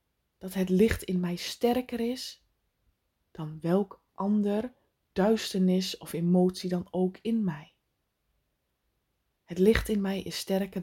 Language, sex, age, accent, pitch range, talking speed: Dutch, female, 20-39, Dutch, 180-220 Hz, 125 wpm